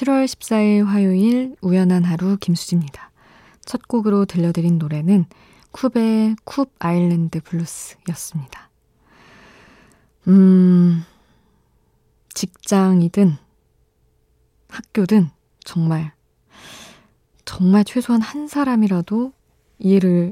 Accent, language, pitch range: native, Korean, 165-200 Hz